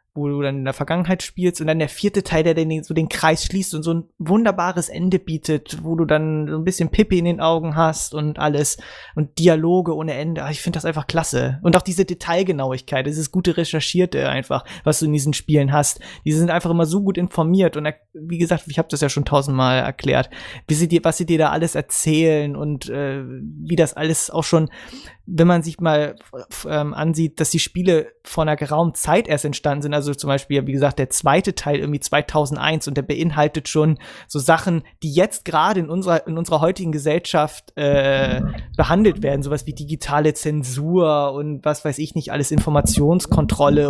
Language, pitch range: English, 145-170 Hz